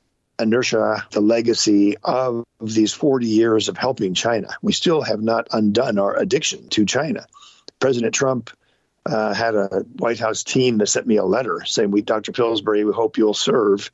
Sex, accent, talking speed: male, American, 170 wpm